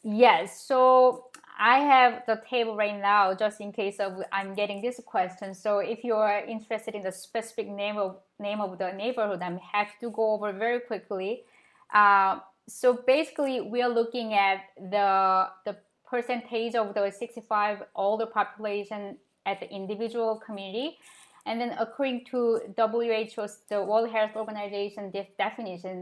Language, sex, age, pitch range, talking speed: English, female, 20-39, 200-240 Hz, 150 wpm